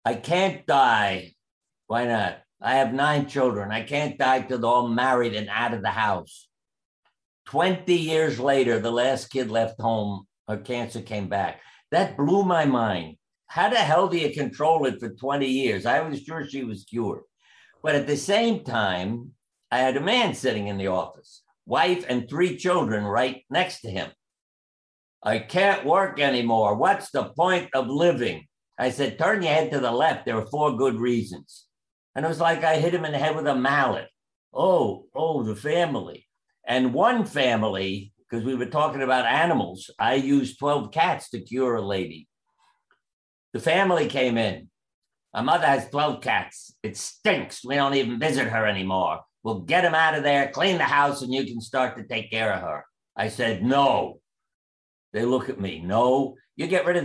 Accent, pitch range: American, 115-150 Hz